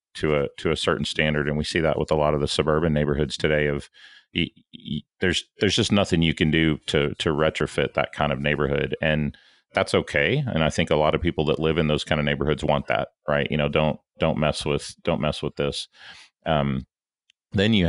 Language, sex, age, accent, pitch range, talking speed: English, male, 40-59, American, 75-80 Hz, 230 wpm